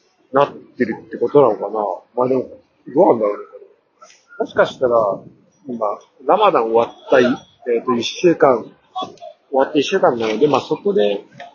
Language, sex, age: Japanese, male, 40-59